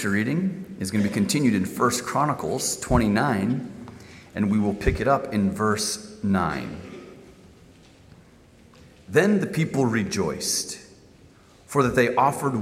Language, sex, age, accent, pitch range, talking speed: English, male, 40-59, American, 105-150 Hz, 130 wpm